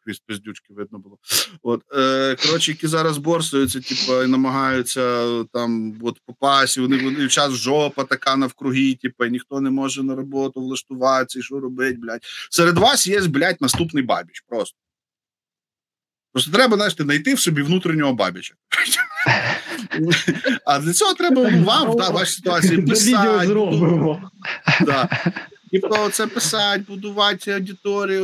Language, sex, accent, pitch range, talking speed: Ukrainian, male, native, 135-190 Hz, 135 wpm